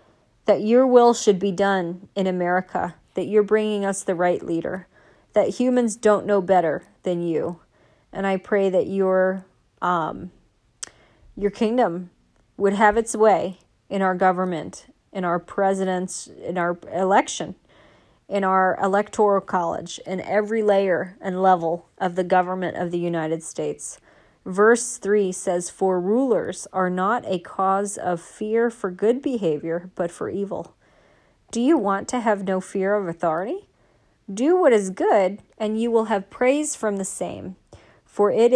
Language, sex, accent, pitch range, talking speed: English, female, American, 185-215 Hz, 155 wpm